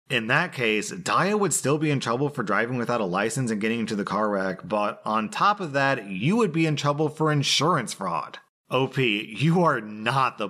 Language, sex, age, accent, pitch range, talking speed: English, male, 30-49, American, 100-135 Hz, 215 wpm